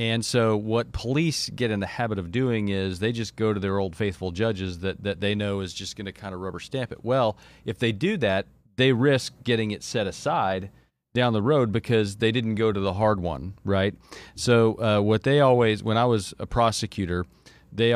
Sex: male